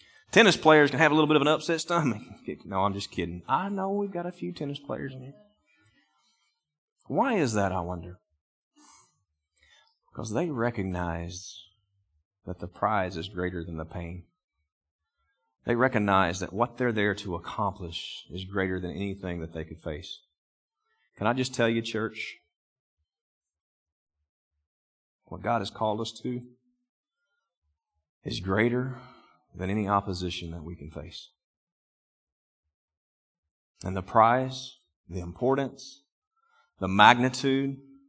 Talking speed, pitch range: 135 wpm, 80-125 Hz